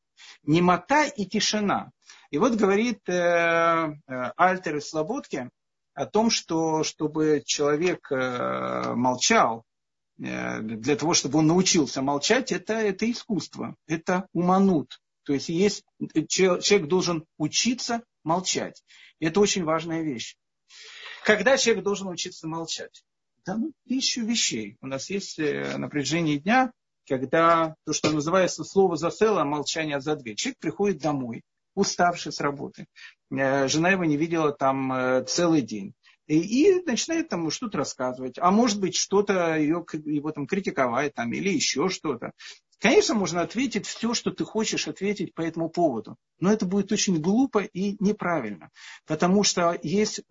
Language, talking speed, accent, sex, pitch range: Russian, 135 wpm, native, male, 150-205 Hz